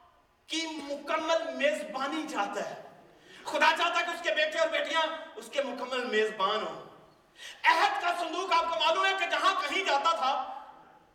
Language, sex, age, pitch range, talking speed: Urdu, male, 40-59, 255-345 Hz, 165 wpm